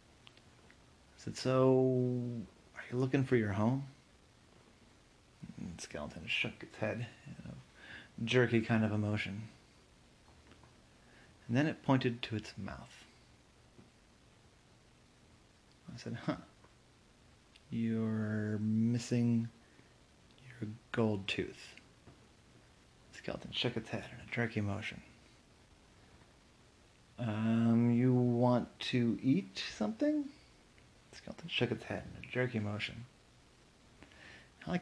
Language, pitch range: English, 110-125 Hz